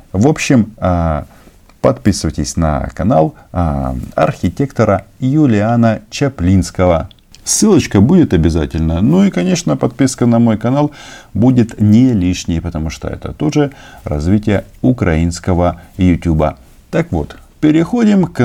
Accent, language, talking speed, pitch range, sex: native, Russian, 105 wpm, 90-130 Hz, male